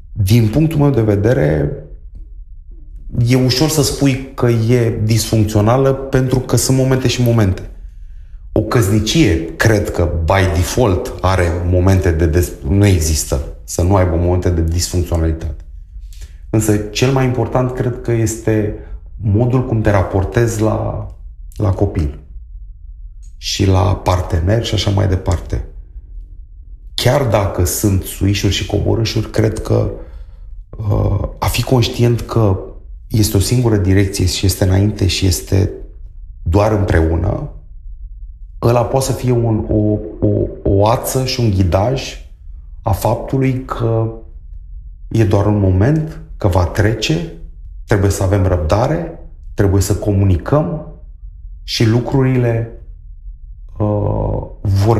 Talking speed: 120 wpm